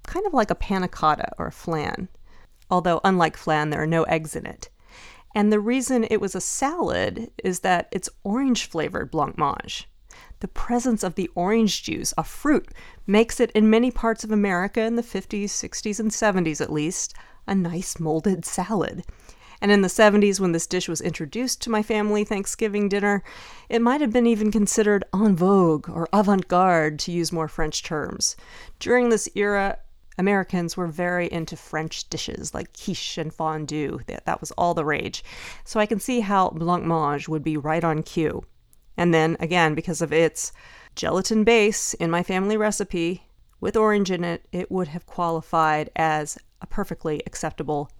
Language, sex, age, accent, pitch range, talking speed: English, female, 40-59, American, 165-215 Hz, 175 wpm